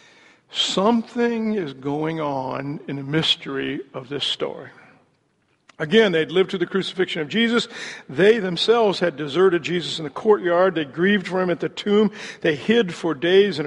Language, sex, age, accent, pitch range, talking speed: English, male, 60-79, American, 155-205 Hz, 165 wpm